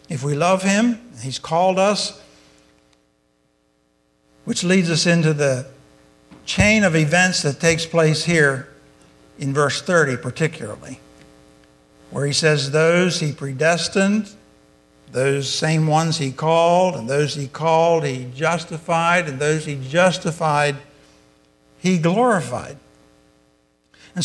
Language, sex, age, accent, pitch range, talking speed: English, male, 60-79, American, 125-180 Hz, 115 wpm